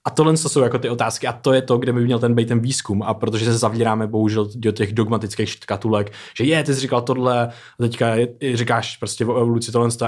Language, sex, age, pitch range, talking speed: Czech, male, 20-39, 110-120 Hz, 230 wpm